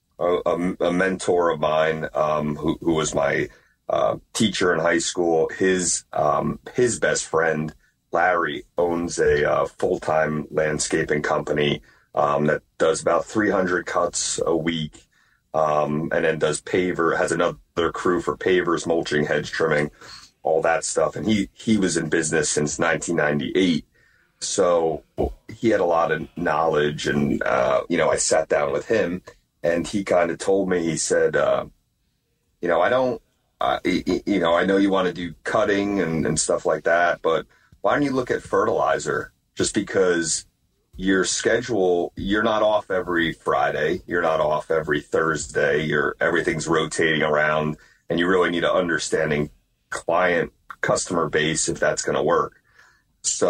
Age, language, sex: 30-49, English, male